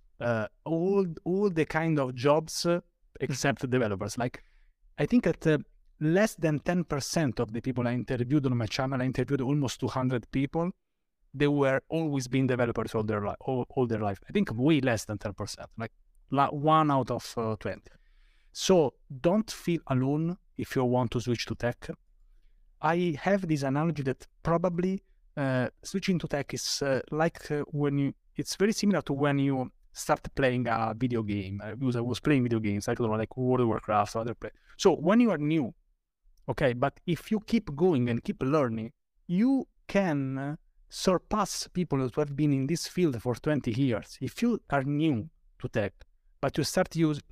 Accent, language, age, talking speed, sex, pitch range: Italian, English, 30-49, 190 wpm, male, 120-160 Hz